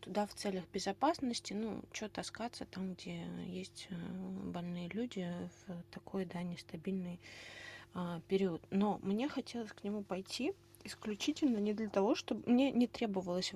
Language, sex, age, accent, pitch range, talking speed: Russian, female, 20-39, native, 175-210 Hz, 140 wpm